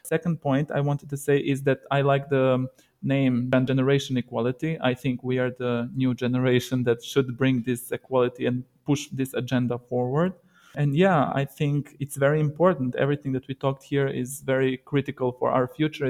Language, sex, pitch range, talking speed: English, male, 125-145 Hz, 185 wpm